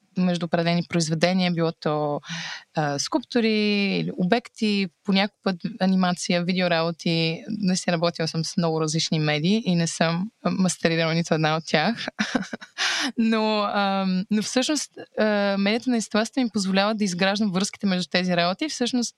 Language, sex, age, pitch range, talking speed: Bulgarian, female, 20-39, 170-210 Hz, 145 wpm